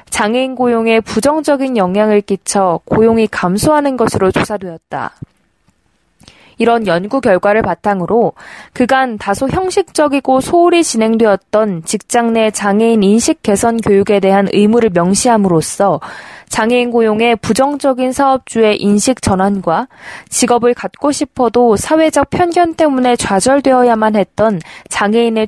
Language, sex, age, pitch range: Korean, female, 20-39, 205-260 Hz